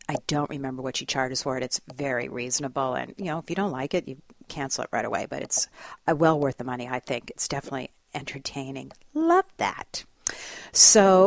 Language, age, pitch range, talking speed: English, 50-69, 135-185 Hz, 210 wpm